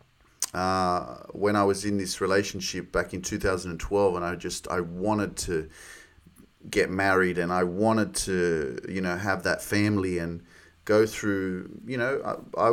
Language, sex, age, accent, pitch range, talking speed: English, male, 30-49, Australian, 100-120 Hz, 155 wpm